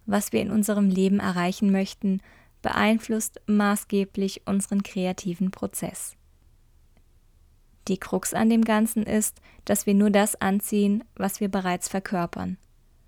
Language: German